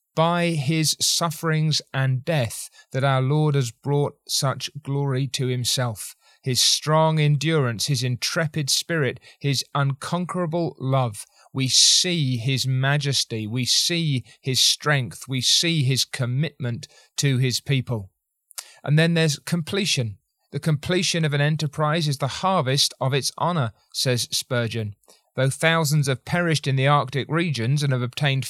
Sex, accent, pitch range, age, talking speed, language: male, British, 130-160 Hz, 30-49, 140 wpm, English